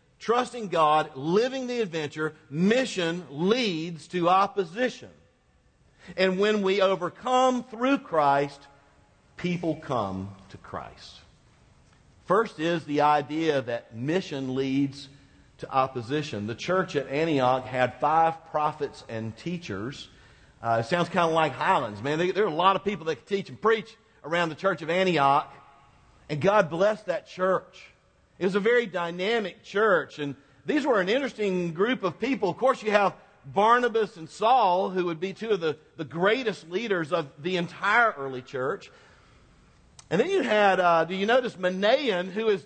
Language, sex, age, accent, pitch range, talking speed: English, male, 50-69, American, 155-225 Hz, 160 wpm